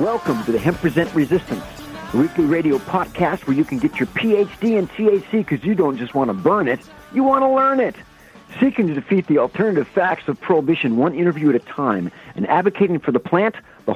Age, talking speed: 50-69, 215 wpm